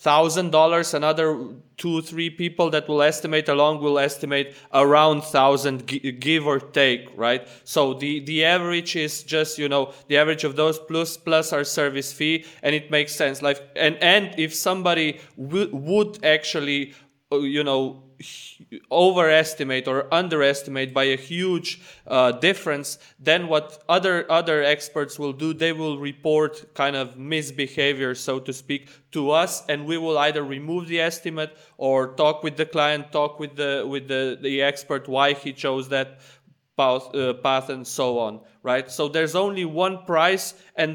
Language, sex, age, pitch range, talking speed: English, male, 20-39, 140-165 Hz, 160 wpm